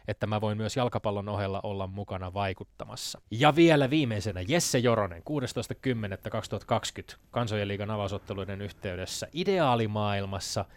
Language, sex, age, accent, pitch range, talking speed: Finnish, male, 20-39, native, 105-135 Hz, 110 wpm